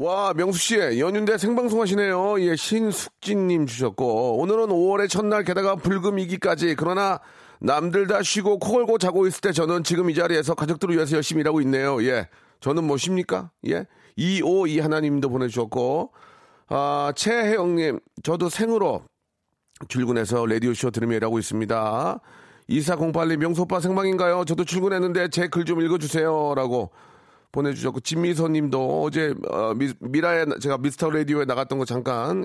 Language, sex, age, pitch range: Korean, male, 40-59, 125-180 Hz